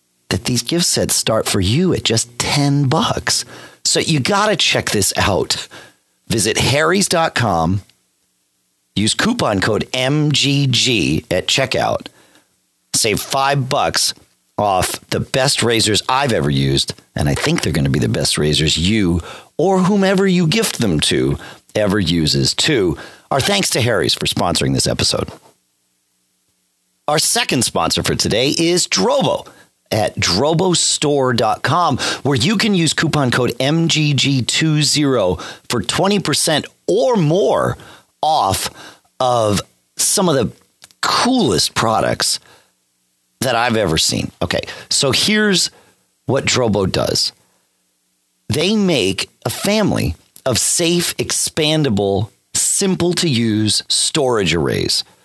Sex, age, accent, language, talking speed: male, 50-69, American, English, 125 wpm